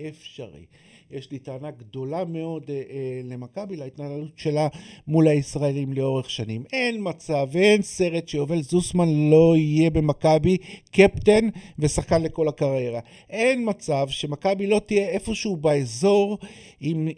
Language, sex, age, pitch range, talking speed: Hebrew, male, 50-69, 150-190 Hz, 120 wpm